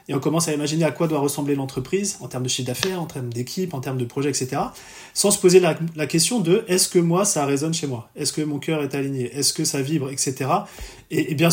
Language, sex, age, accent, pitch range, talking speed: French, male, 30-49, French, 130-170 Hz, 260 wpm